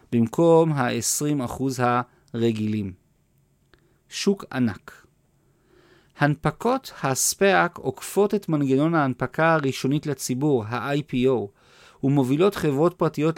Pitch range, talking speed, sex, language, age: 125-165 Hz, 75 wpm, male, Hebrew, 40-59